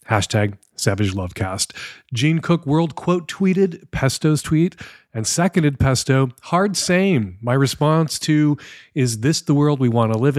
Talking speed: 150 wpm